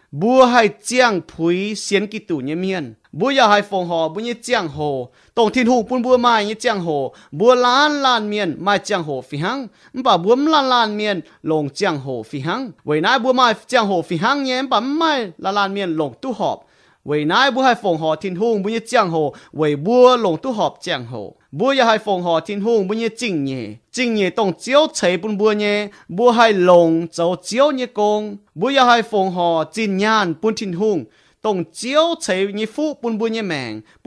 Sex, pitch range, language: male, 175-245 Hz, English